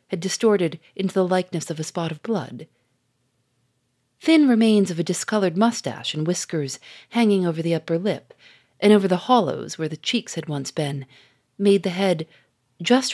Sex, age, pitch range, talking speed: female, 40-59, 145-205 Hz, 170 wpm